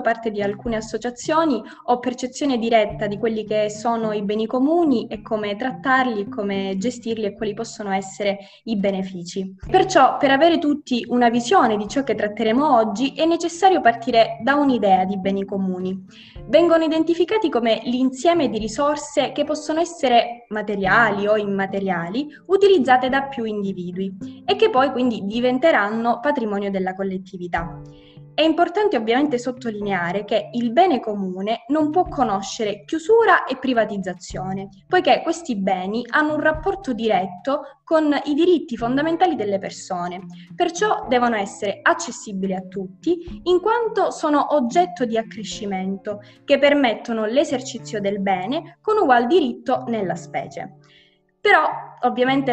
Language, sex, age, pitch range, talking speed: Italian, female, 20-39, 205-285 Hz, 135 wpm